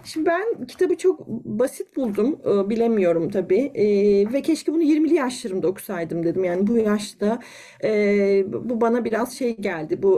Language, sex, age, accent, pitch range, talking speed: Turkish, female, 40-59, native, 220-355 Hz, 160 wpm